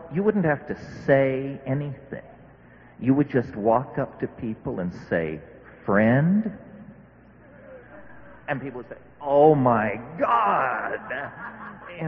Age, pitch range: 50-69, 115-165 Hz